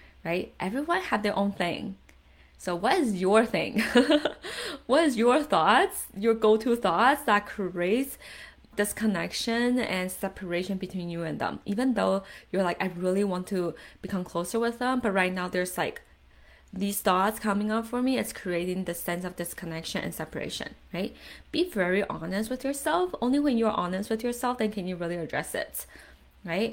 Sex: female